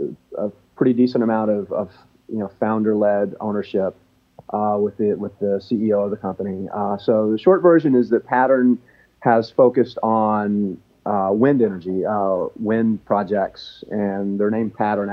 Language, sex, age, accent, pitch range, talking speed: English, male, 40-59, American, 100-115 Hz, 160 wpm